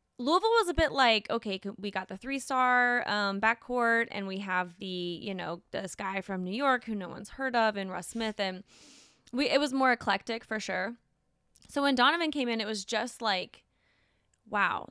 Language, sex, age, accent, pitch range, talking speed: English, female, 20-39, American, 185-240 Hz, 195 wpm